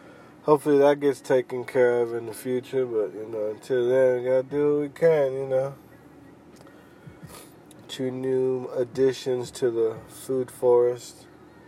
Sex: male